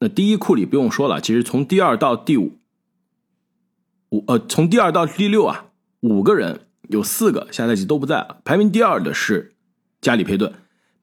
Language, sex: Chinese, male